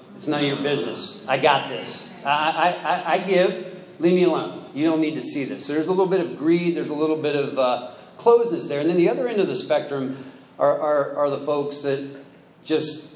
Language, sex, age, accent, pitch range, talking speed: English, male, 40-59, American, 140-180 Hz, 235 wpm